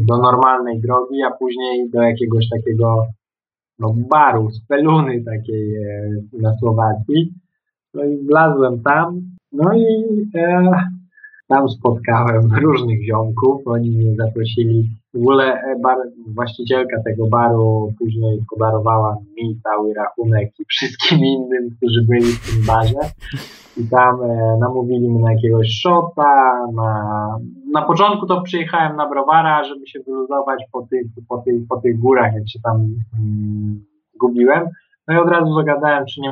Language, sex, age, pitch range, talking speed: Polish, male, 20-39, 115-135 Hz, 130 wpm